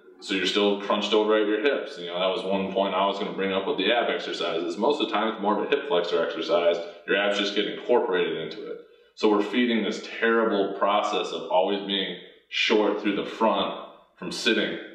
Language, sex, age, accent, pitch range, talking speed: English, male, 20-39, American, 90-110 Hz, 230 wpm